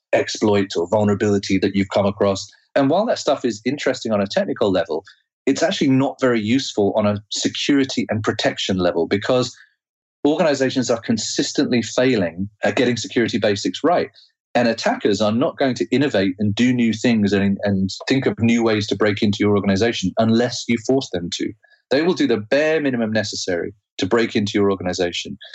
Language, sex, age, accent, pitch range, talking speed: English, male, 30-49, British, 100-125 Hz, 180 wpm